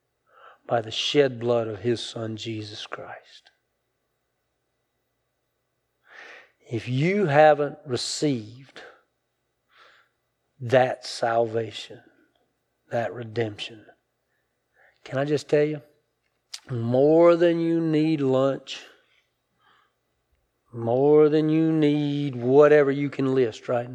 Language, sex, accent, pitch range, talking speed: English, male, American, 115-160 Hz, 90 wpm